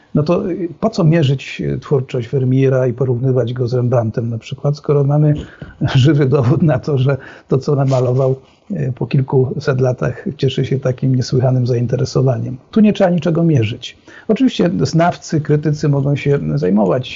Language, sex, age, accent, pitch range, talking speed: Polish, male, 50-69, native, 130-160 Hz, 150 wpm